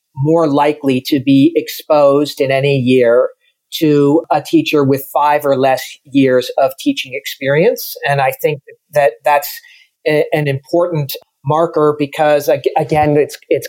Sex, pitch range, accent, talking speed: male, 145-200 Hz, American, 135 wpm